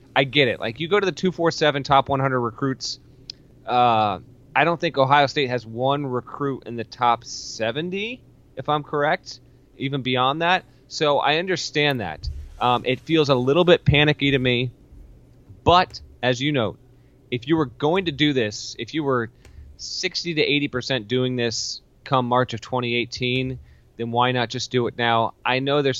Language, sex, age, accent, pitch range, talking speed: English, male, 30-49, American, 115-145 Hz, 180 wpm